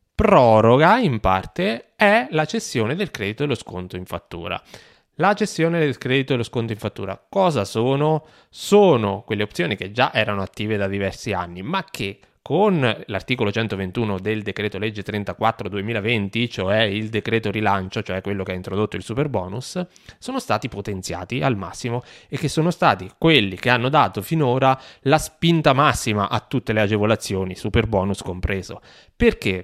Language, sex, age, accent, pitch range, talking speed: Italian, male, 20-39, native, 100-140 Hz, 165 wpm